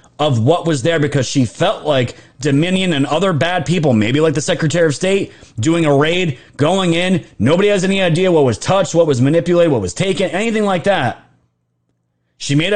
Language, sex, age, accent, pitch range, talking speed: English, male, 30-49, American, 130-175 Hz, 200 wpm